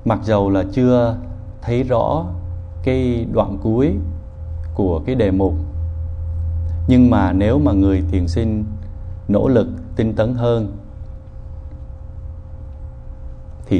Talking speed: 115 wpm